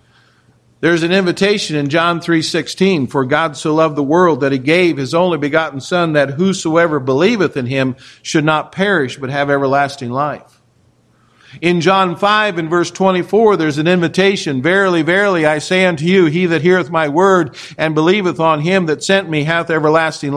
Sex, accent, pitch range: male, American, 150-190 Hz